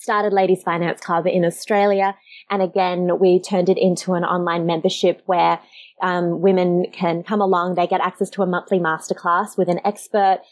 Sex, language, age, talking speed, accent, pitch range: female, English, 20-39, 175 wpm, Australian, 175-200 Hz